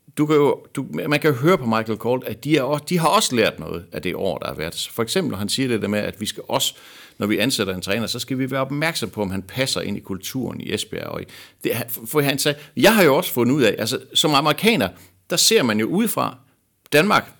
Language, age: Danish, 60-79